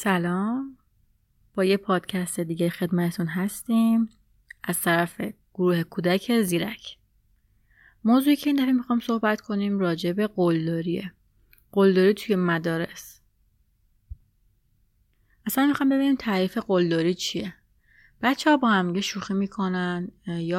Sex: female